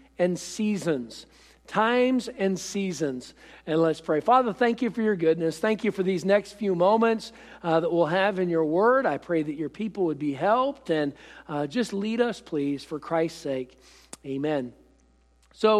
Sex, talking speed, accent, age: male, 180 wpm, American, 50-69